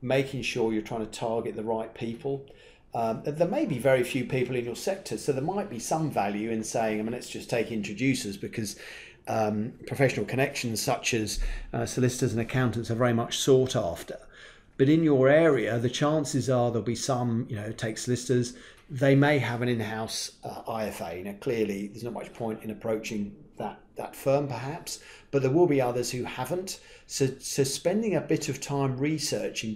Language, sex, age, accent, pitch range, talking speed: English, male, 40-59, British, 110-135 Hz, 195 wpm